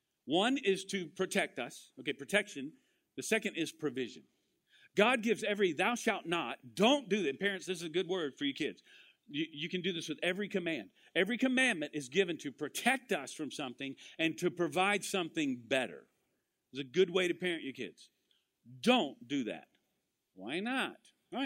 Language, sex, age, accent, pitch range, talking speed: English, male, 40-59, American, 160-245 Hz, 180 wpm